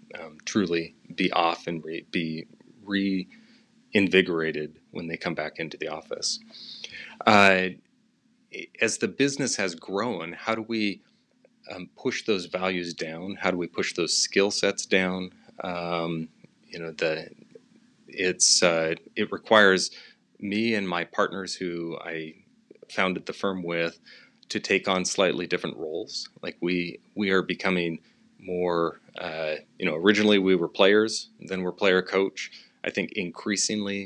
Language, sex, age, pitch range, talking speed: English, male, 30-49, 85-100 Hz, 145 wpm